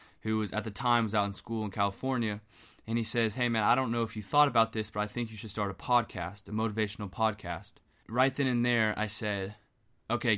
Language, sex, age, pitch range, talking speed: English, male, 20-39, 100-115 Hz, 245 wpm